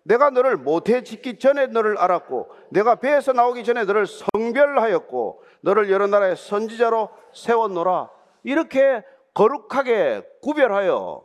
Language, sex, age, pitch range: Korean, male, 40-59, 215-295 Hz